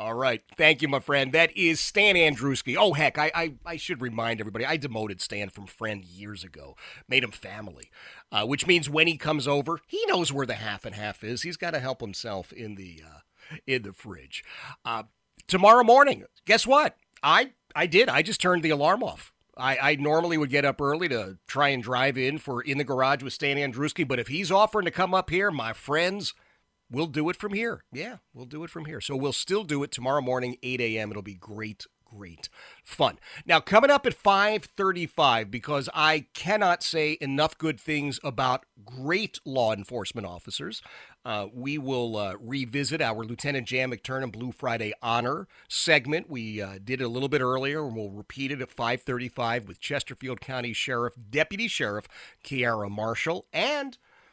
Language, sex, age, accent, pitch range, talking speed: English, male, 40-59, American, 115-160 Hz, 195 wpm